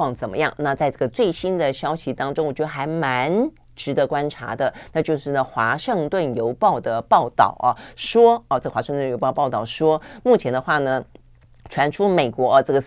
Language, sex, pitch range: Chinese, female, 130-175 Hz